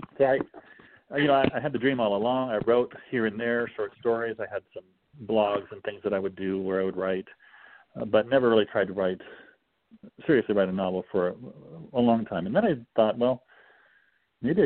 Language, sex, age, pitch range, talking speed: English, male, 40-59, 100-120 Hz, 220 wpm